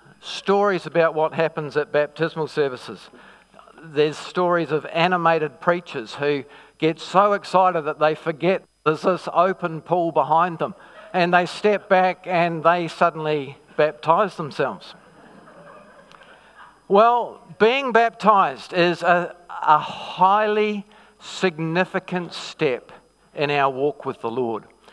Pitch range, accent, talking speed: 155-200 Hz, Australian, 120 wpm